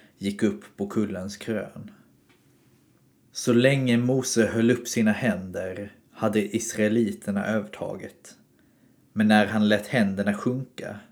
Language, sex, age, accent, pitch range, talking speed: Swedish, male, 30-49, native, 105-120 Hz, 115 wpm